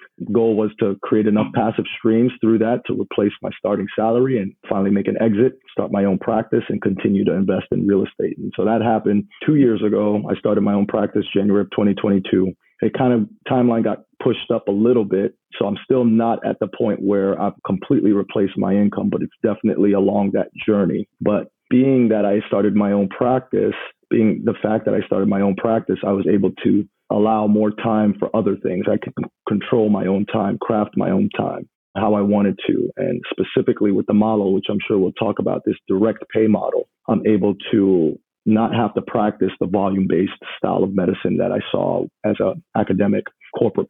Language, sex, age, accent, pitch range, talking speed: English, male, 40-59, American, 100-110 Hz, 205 wpm